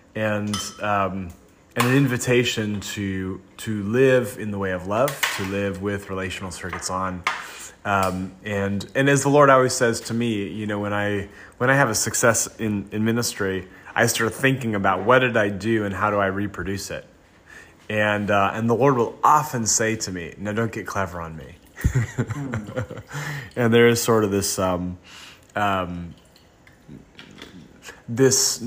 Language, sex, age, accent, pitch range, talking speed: English, male, 30-49, American, 95-115 Hz, 165 wpm